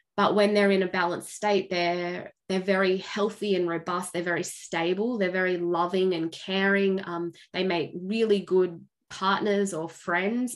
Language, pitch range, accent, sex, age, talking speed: English, 180-210 Hz, Australian, female, 20-39, 165 wpm